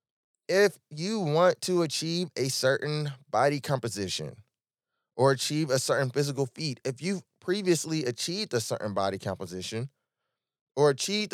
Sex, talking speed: male, 130 wpm